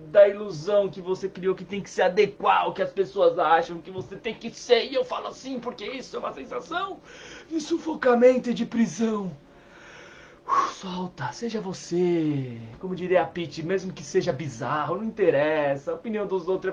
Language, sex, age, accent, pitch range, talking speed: Portuguese, male, 20-39, Brazilian, 170-225 Hz, 190 wpm